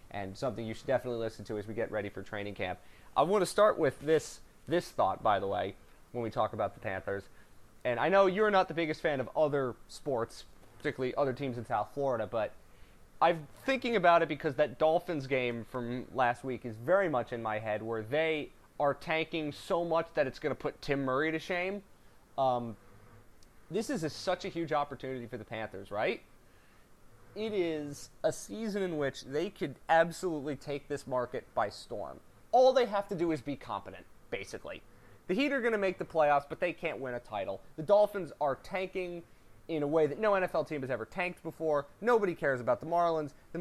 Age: 30-49